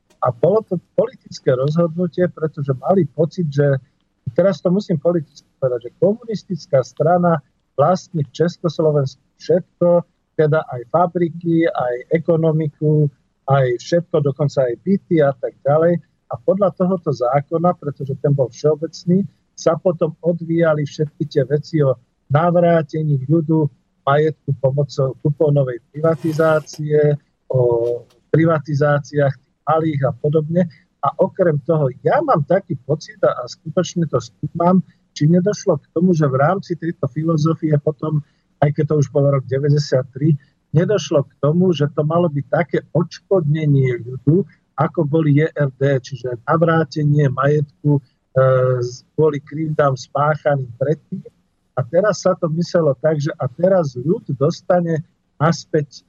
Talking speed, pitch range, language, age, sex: 130 wpm, 140-170 Hz, Slovak, 50-69, male